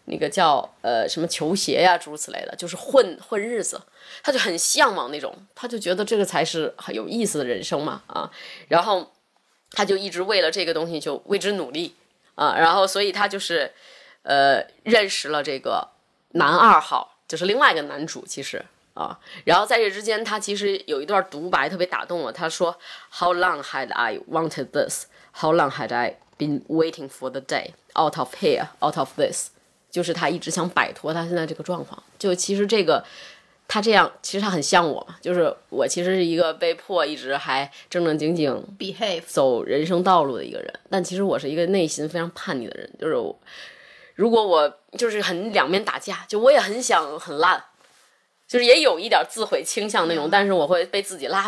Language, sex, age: Chinese, female, 20-39